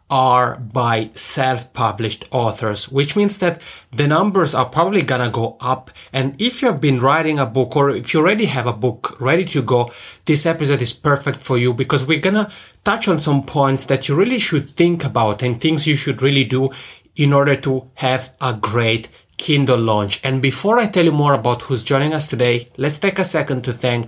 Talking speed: 210 wpm